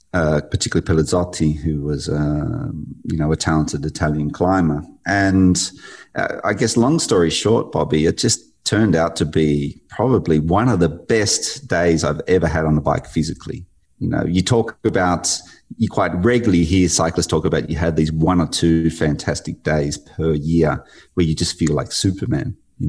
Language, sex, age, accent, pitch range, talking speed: English, male, 30-49, Australian, 80-95 Hz, 180 wpm